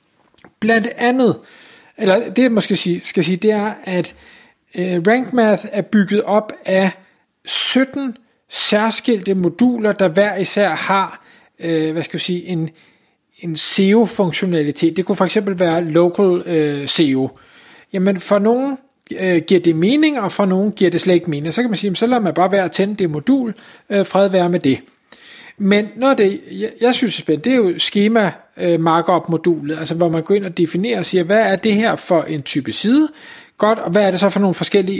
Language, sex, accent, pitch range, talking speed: Danish, male, native, 170-215 Hz, 200 wpm